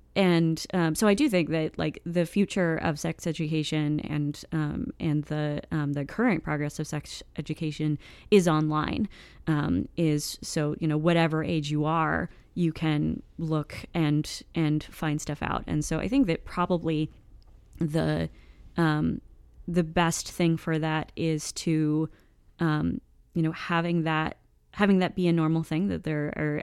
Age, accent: 30-49, American